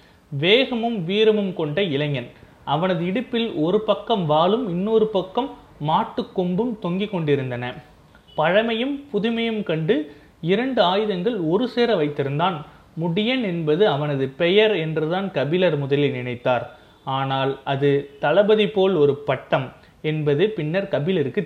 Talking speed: 110 wpm